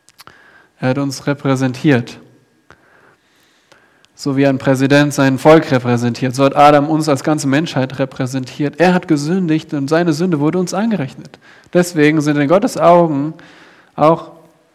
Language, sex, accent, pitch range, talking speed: German, male, German, 135-155 Hz, 135 wpm